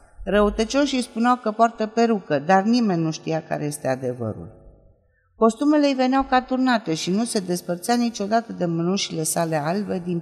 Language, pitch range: Romanian, 150-220 Hz